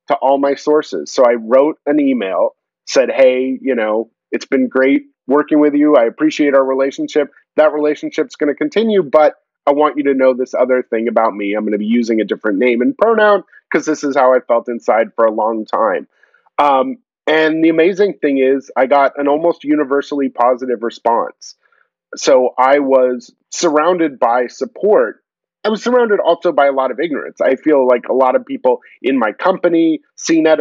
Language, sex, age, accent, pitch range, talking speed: English, male, 30-49, American, 130-160 Hz, 195 wpm